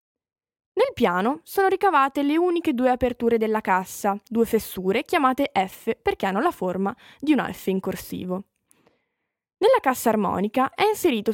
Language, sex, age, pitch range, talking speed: Italian, female, 10-29, 200-280 Hz, 150 wpm